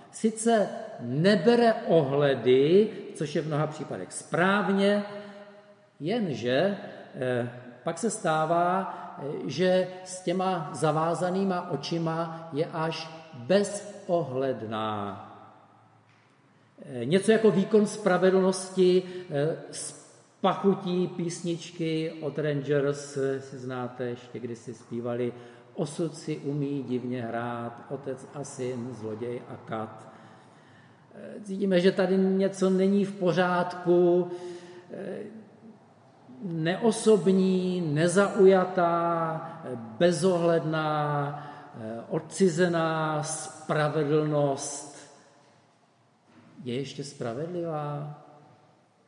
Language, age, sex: Czech, 50-69, male